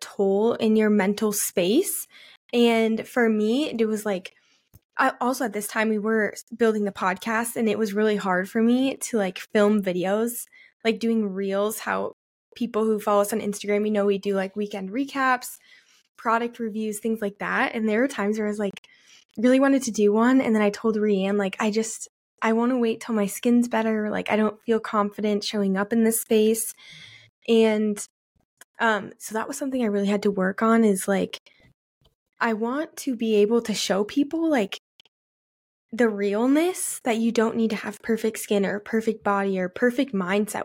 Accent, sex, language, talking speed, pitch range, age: American, female, English, 195 wpm, 205-235 Hz, 20-39